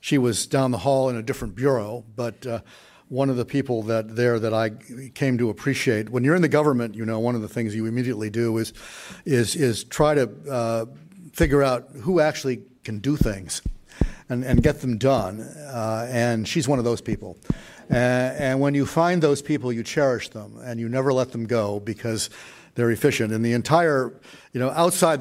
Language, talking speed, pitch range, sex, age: English, 205 wpm, 110-135 Hz, male, 50-69